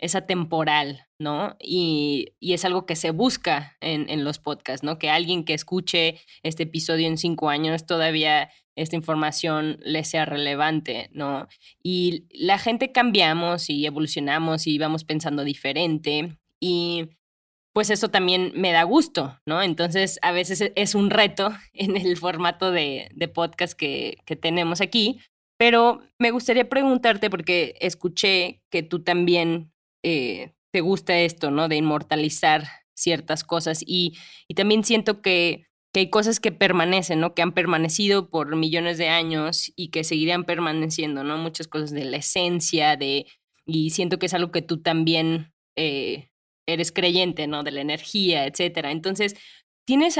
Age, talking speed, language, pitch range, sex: 20-39, 155 wpm, Spanish, 155-185 Hz, female